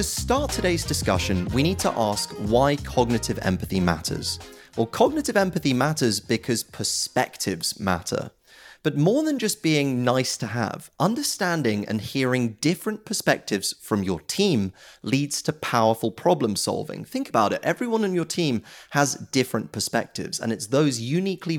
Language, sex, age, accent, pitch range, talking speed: English, male, 30-49, British, 105-165 Hz, 150 wpm